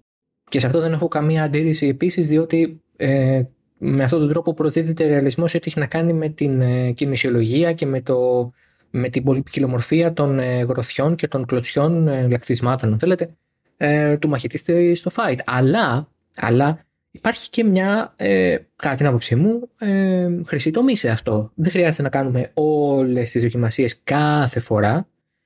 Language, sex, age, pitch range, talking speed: Greek, male, 20-39, 125-165 Hz, 150 wpm